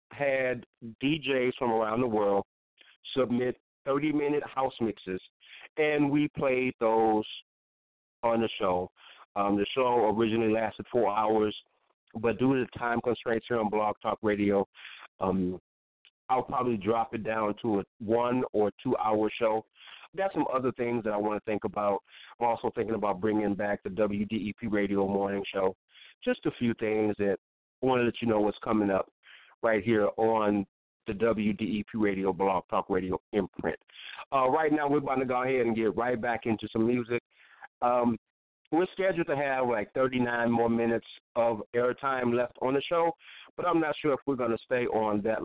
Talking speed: 175 wpm